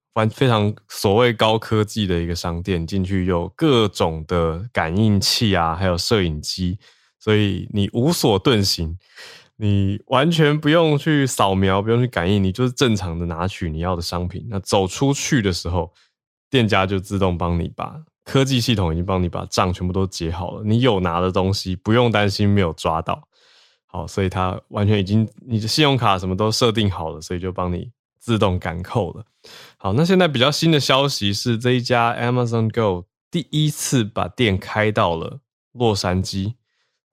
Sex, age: male, 20-39